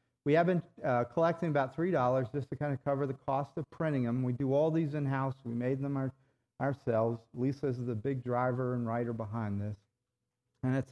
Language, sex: English, male